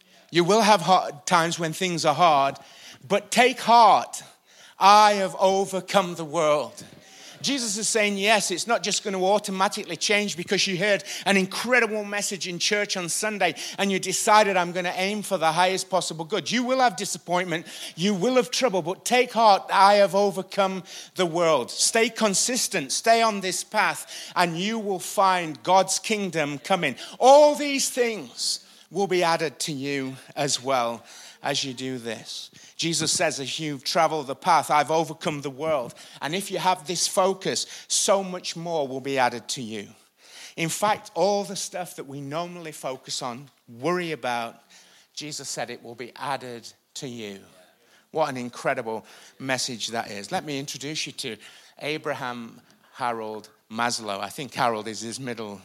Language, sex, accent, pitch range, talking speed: English, male, British, 140-195 Hz, 170 wpm